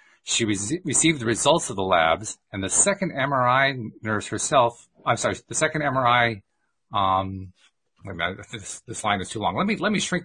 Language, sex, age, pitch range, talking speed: English, male, 40-59, 100-135 Hz, 195 wpm